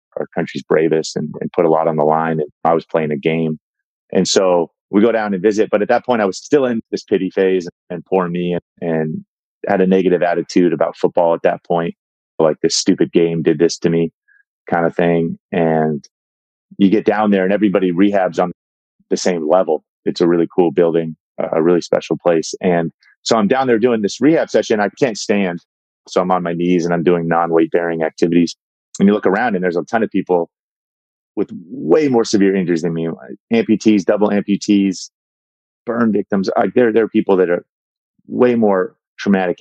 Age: 30-49